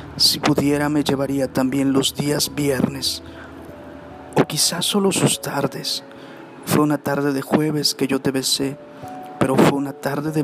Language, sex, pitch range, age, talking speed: Spanish, male, 135-150 Hz, 40-59, 155 wpm